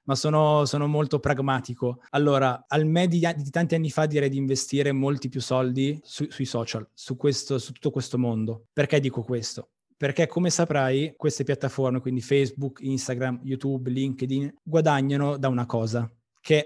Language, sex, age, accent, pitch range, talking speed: Italian, male, 20-39, native, 130-155 Hz, 160 wpm